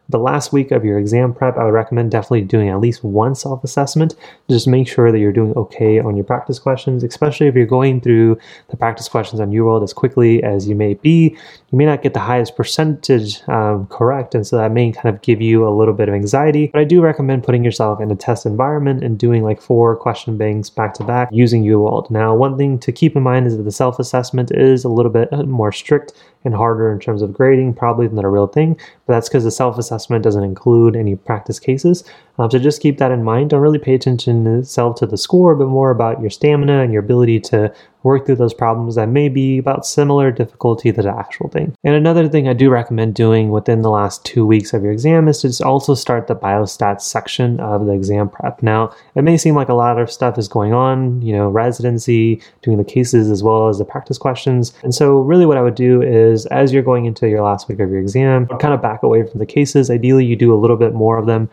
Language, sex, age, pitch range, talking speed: English, male, 20-39, 110-135 Hz, 240 wpm